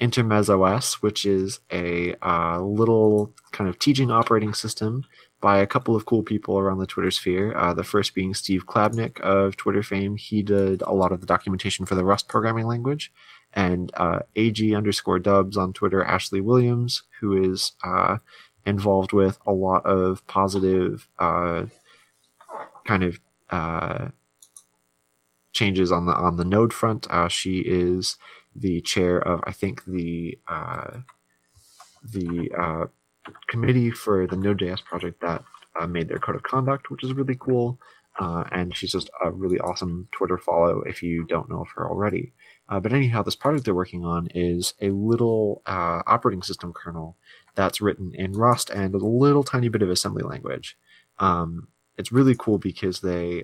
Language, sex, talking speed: English, male, 170 wpm